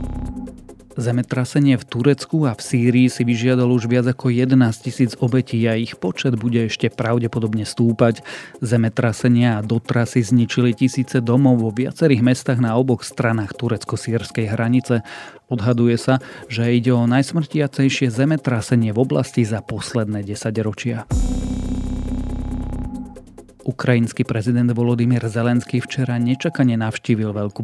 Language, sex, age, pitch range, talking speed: Slovak, male, 40-59, 110-130 Hz, 120 wpm